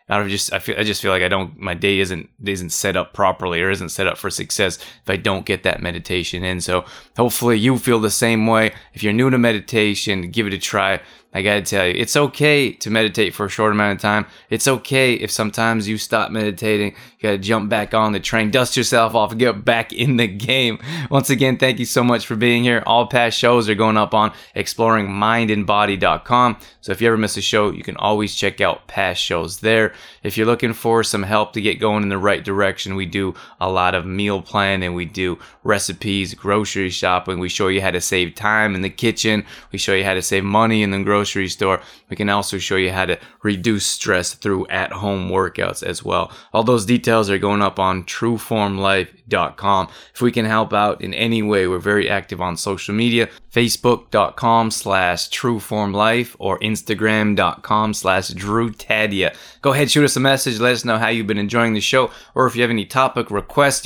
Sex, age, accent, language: male, 20-39, American, English